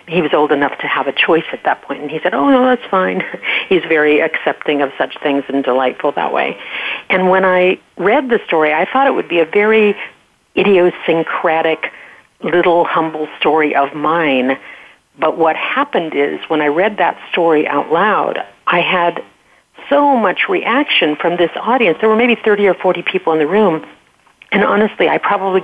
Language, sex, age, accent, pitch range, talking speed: English, female, 50-69, American, 150-200 Hz, 185 wpm